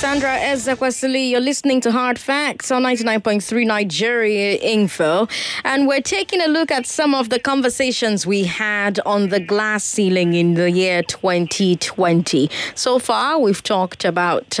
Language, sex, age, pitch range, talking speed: English, female, 20-39, 170-235 Hz, 150 wpm